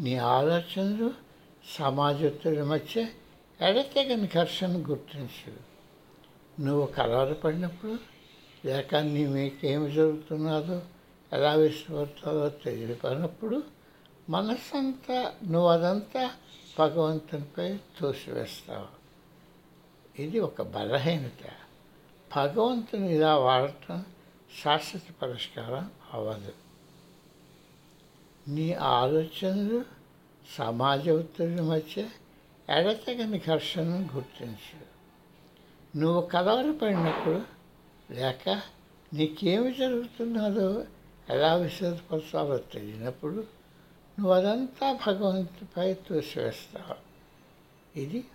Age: 60-79